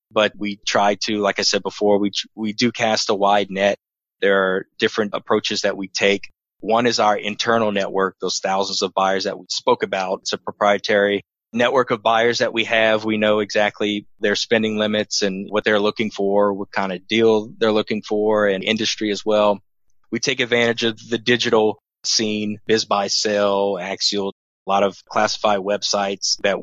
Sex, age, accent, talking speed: male, 20-39, American, 185 wpm